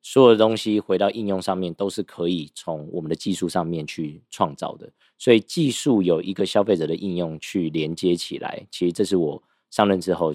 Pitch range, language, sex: 85-105 Hz, Chinese, male